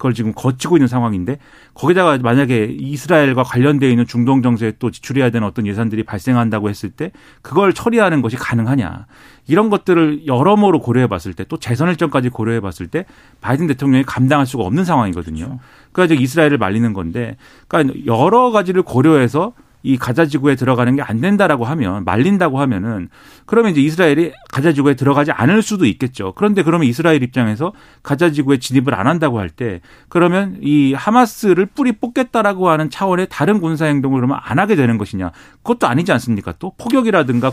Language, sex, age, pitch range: Korean, male, 40-59, 120-165 Hz